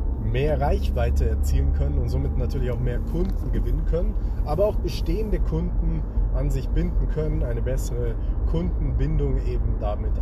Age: 30-49